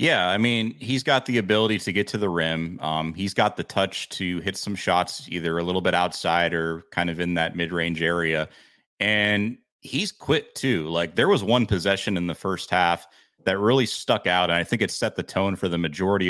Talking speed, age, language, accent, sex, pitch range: 220 wpm, 30-49, English, American, male, 85-110 Hz